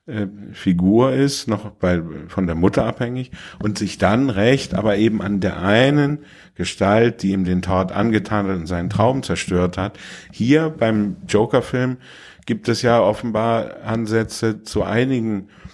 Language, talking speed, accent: German, 150 wpm, German